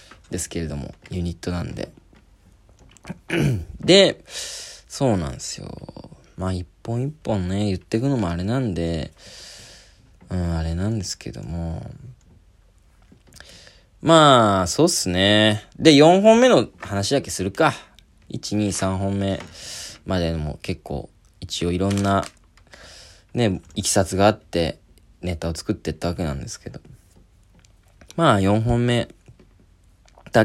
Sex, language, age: male, Japanese, 20-39